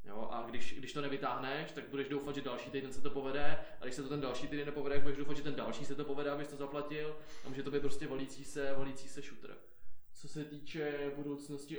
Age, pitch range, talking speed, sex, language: 20-39, 130-140 Hz, 245 wpm, male, Czech